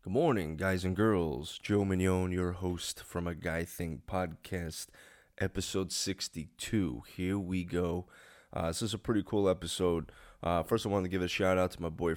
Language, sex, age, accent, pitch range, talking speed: English, male, 20-39, American, 85-95 Hz, 185 wpm